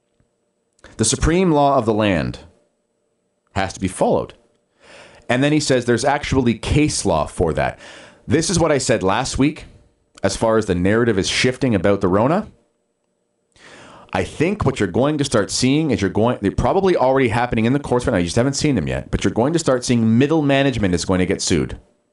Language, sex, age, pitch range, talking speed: English, male, 40-59, 110-145 Hz, 205 wpm